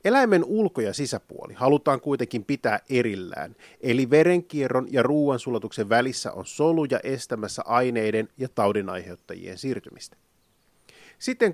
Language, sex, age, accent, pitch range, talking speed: Finnish, male, 30-49, native, 110-155 Hz, 110 wpm